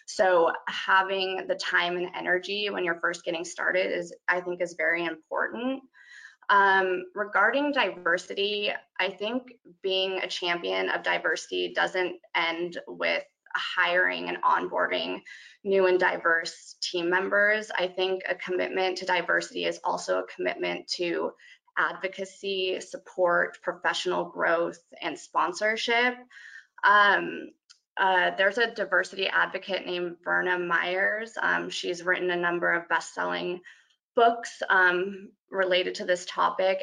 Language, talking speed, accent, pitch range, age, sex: English, 125 wpm, American, 180-195 Hz, 20-39, female